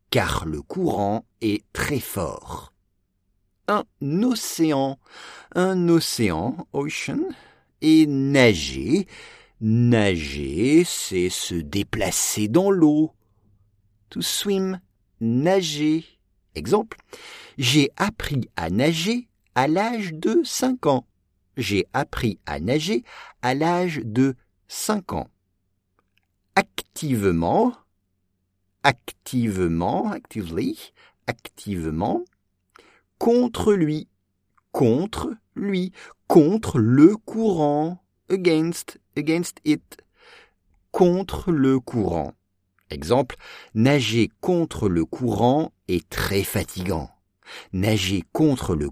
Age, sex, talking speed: 50-69, male, 85 wpm